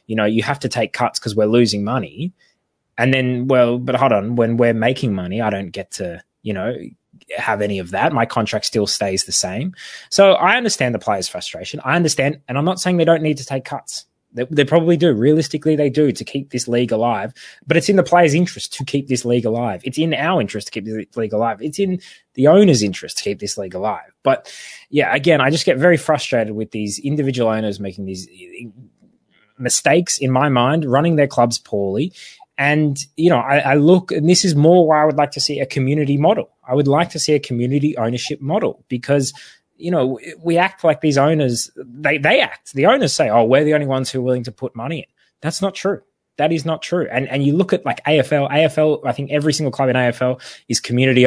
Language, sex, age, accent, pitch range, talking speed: English, male, 20-39, Australian, 120-160 Hz, 230 wpm